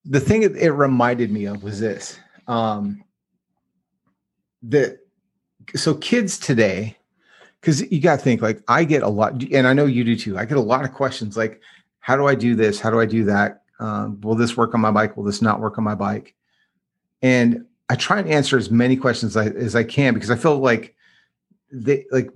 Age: 30-49